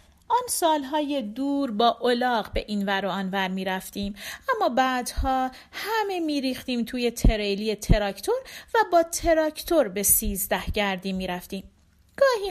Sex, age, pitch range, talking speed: female, 40-59, 200-295 Hz, 125 wpm